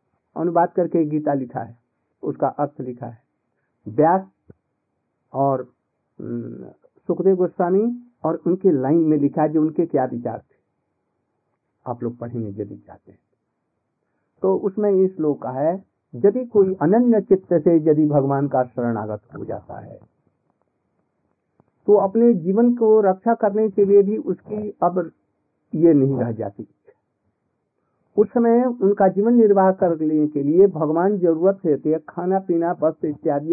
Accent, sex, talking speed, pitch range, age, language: native, male, 140 wpm, 145-200 Hz, 50-69, Hindi